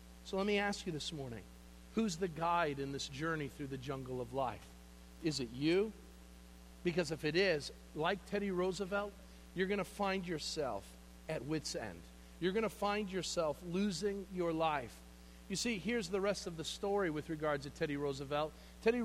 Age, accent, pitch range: 50-69, American, 135-185 Hz